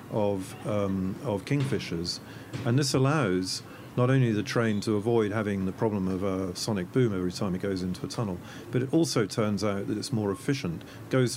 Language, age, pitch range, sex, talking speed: English, 40-59, 100-125 Hz, male, 190 wpm